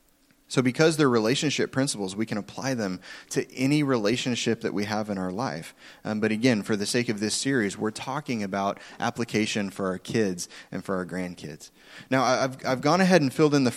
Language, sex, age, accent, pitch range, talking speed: English, male, 20-39, American, 110-140 Hz, 205 wpm